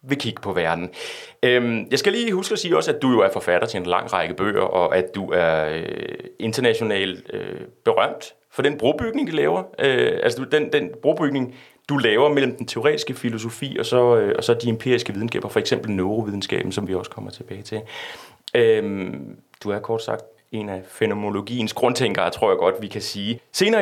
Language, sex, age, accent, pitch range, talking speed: Danish, male, 30-49, native, 95-150 Hz, 200 wpm